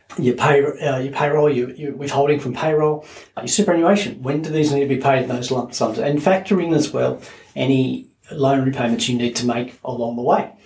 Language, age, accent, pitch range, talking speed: English, 40-59, Australian, 130-165 Hz, 220 wpm